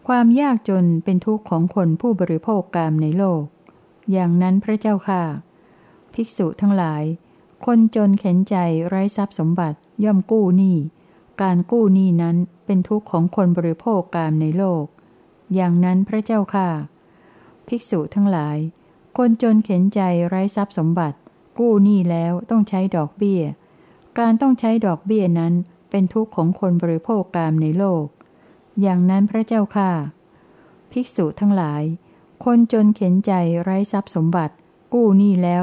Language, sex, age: Thai, female, 60-79